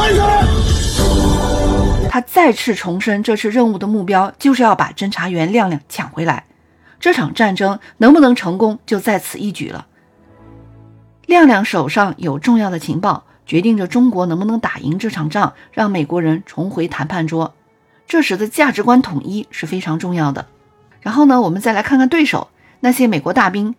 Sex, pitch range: female, 170-245 Hz